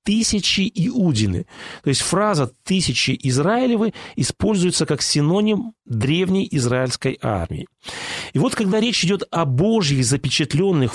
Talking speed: 115 wpm